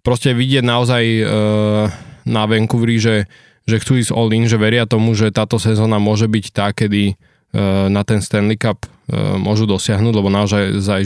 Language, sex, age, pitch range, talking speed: Slovak, male, 20-39, 100-115 Hz, 150 wpm